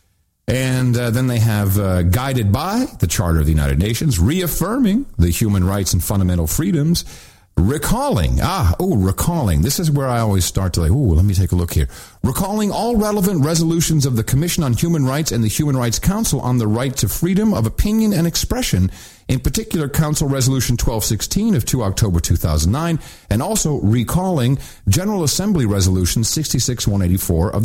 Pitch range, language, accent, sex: 95-155 Hz, English, American, male